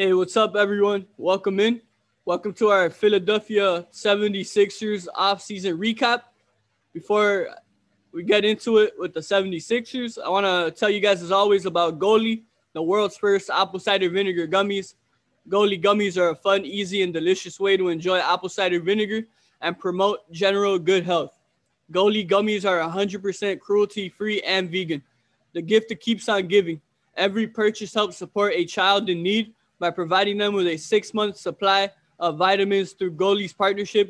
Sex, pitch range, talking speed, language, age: male, 180-210 Hz, 160 wpm, English, 20-39